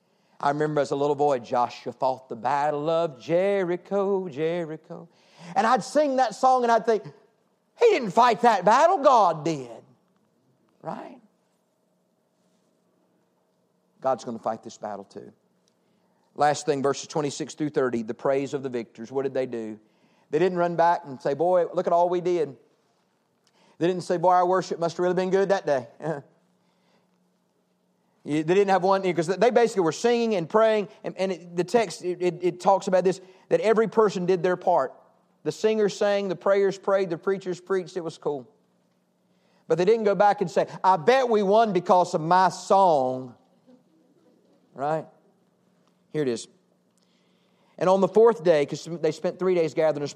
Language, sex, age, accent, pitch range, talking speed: English, male, 50-69, American, 150-195 Hz, 175 wpm